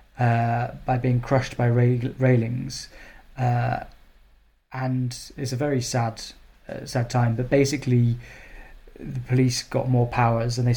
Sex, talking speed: male, 135 wpm